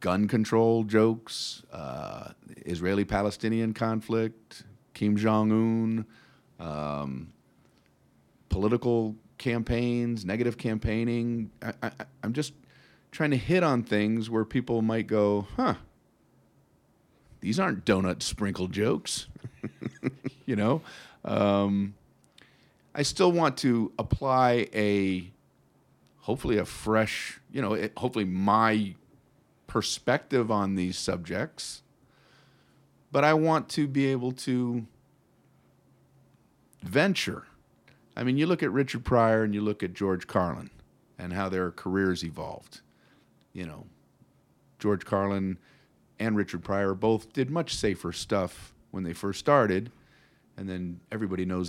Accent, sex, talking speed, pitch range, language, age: American, male, 115 wpm, 95-120 Hz, English, 40-59